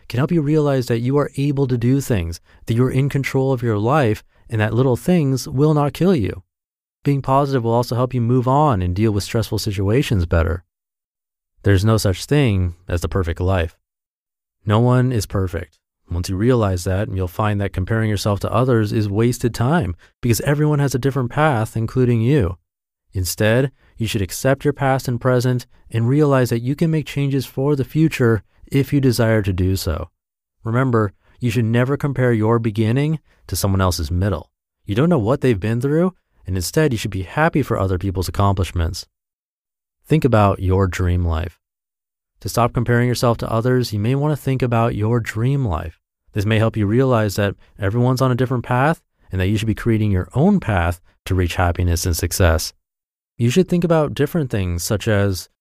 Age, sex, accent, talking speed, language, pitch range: 30-49, male, American, 190 wpm, English, 95-130 Hz